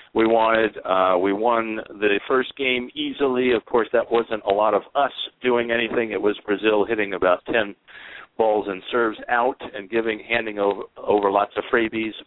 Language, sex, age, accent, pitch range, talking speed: English, male, 50-69, American, 105-120 Hz, 180 wpm